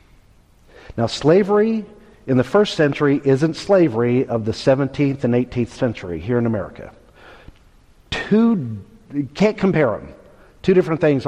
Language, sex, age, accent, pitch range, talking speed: English, male, 50-69, American, 130-180 Hz, 135 wpm